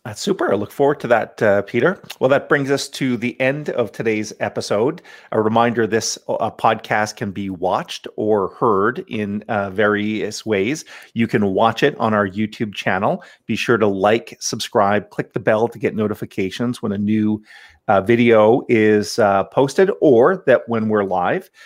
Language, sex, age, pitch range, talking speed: English, male, 40-59, 105-125 Hz, 180 wpm